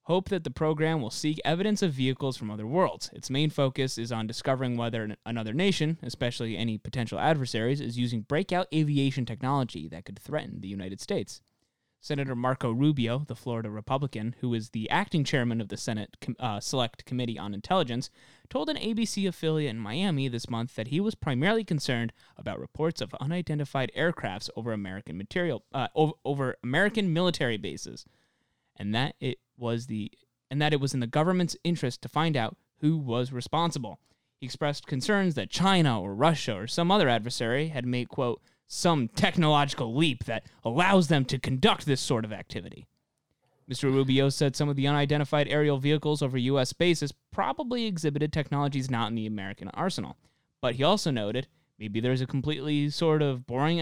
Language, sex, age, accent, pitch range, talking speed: English, male, 20-39, American, 120-155 Hz, 175 wpm